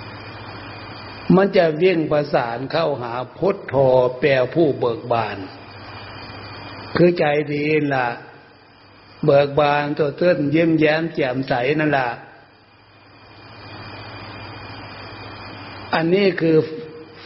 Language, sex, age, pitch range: Thai, male, 60-79, 105-155 Hz